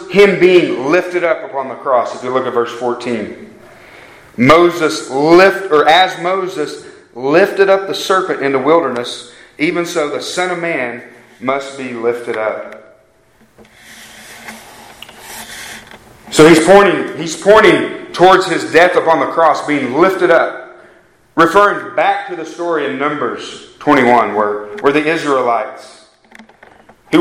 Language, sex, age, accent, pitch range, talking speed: English, male, 40-59, American, 150-205 Hz, 135 wpm